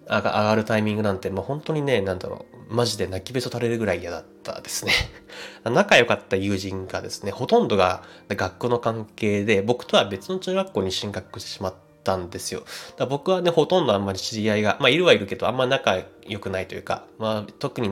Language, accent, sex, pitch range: Japanese, native, male, 100-125 Hz